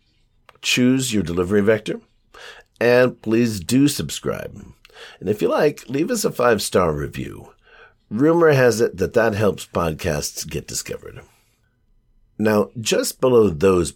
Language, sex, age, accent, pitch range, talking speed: English, male, 50-69, American, 80-115 Hz, 130 wpm